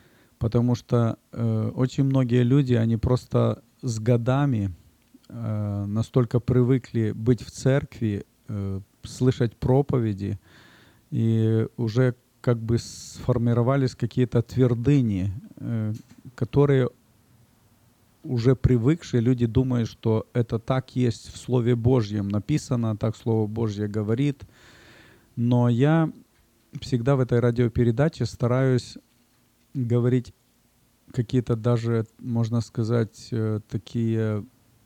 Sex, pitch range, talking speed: male, 115-125 Hz, 100 wpm